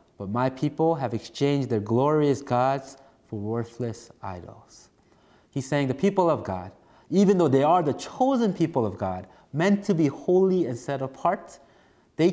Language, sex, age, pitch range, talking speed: English, male, 30-49, 115-155 Hz, 165 wpm